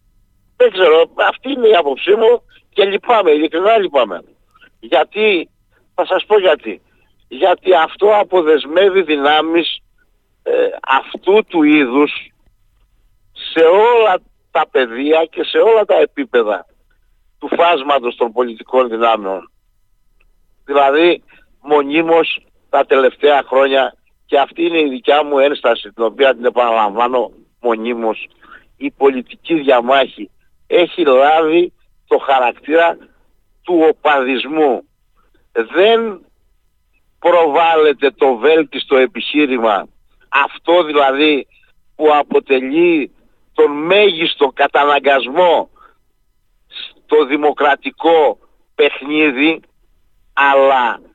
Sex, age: male, 60-79